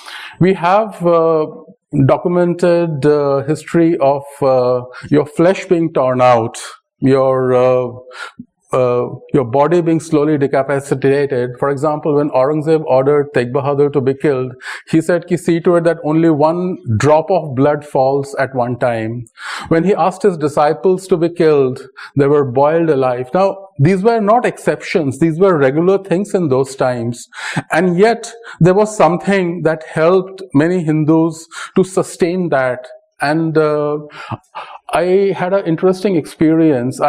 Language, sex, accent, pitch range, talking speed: English, male, Indian, 135-175 Hz, 145 wpm